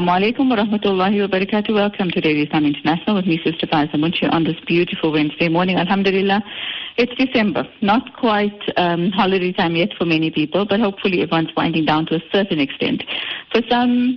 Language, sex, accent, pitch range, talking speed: English, female, Indian, 165-215 Hz, 175 wpm